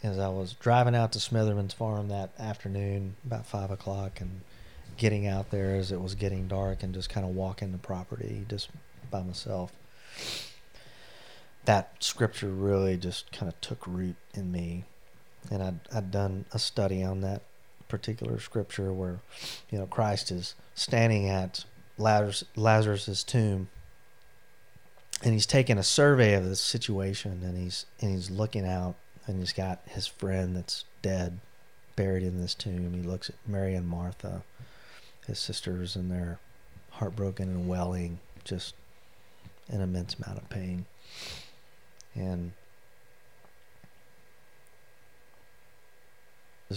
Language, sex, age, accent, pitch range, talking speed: English, male, 40-59, American, 90-105 Hz, 140 wpm